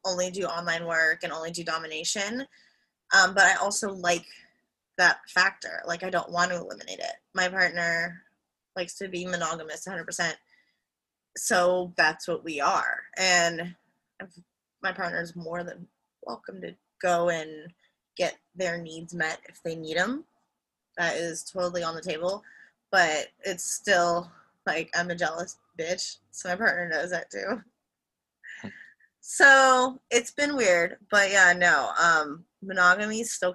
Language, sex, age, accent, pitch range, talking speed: English, female, 20-39, American, 170-205 Hz, 150 wpm